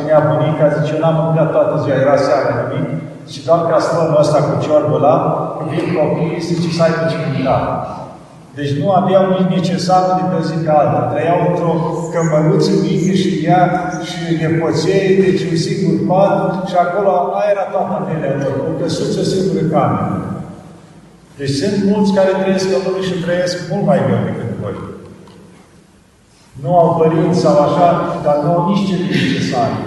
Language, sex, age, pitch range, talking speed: Romanian, male, 50-69, 155-180 Hz, 170 wpm